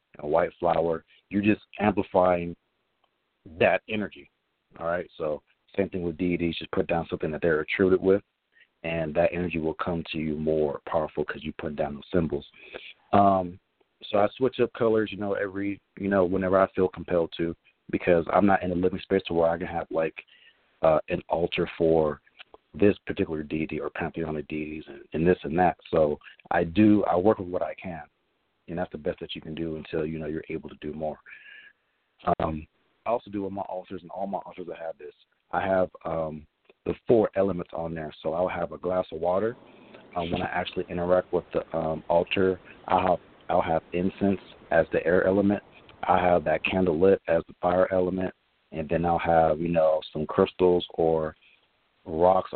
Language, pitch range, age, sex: English, 80-95 Hz, 40-59, male